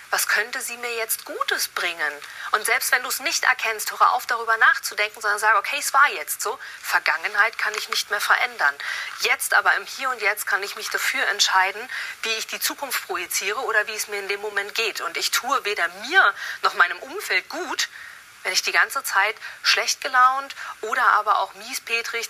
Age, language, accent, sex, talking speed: 40-59, German, German, female, 200 wpm